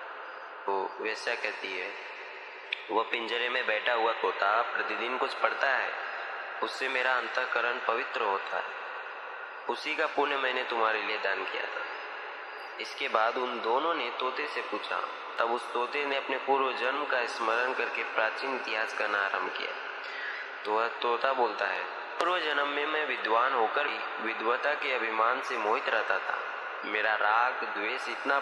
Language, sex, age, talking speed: Hindi, male, 20-39, 160 wpm